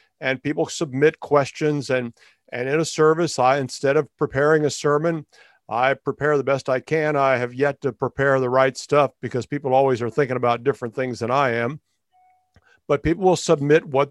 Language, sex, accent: English, male, American